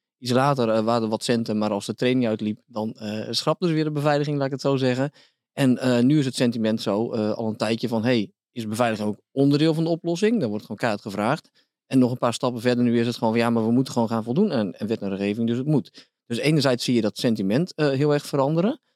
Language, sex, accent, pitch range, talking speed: Dutch, male, Dutch, 115-140 Hz, 265 wpm